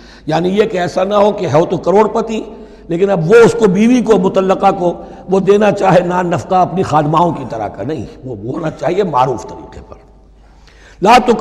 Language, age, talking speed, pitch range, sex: Urdu, 60-79, 195 wpm, 160-225 Hz, male